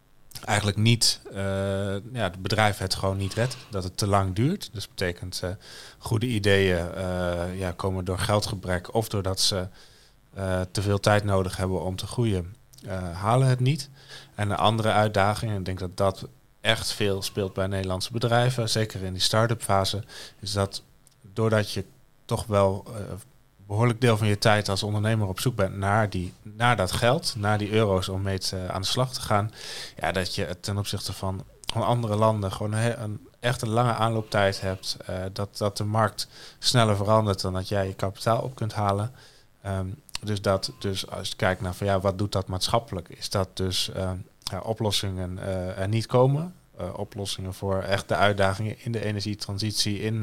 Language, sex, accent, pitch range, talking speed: Dutch, male, Dutch, 95-115 Hz, 190 wpm